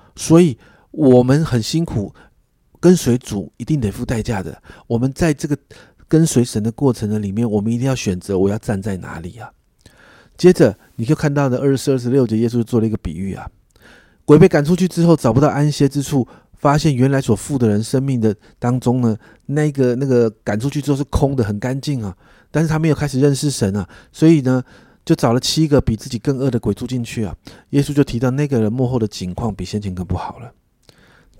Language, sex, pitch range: Chinese, male, 110-140 Hz